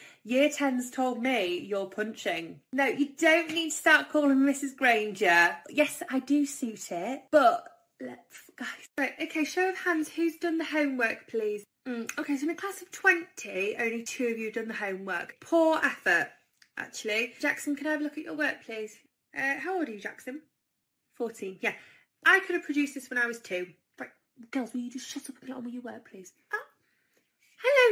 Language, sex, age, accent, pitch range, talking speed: English, female, 20-39, British, 225-305 Hz, 205 wpm